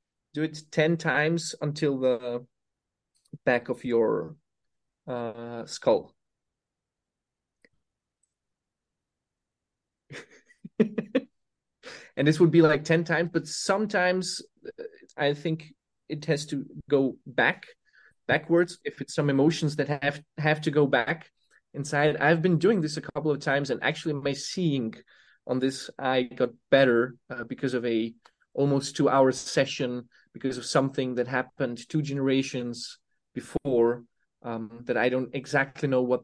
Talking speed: 130 wpm